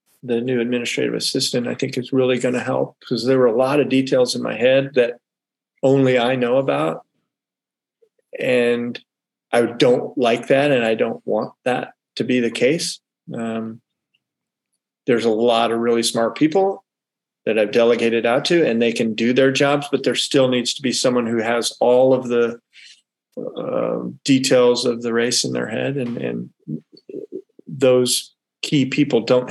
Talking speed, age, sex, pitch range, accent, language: 175 wpm, 40-59, male, 120-140 Hz, American, English